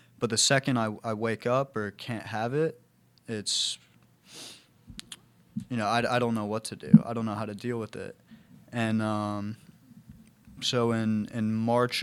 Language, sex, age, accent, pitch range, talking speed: English, male, 20-39, American, 105-120 Hz, 175 wpm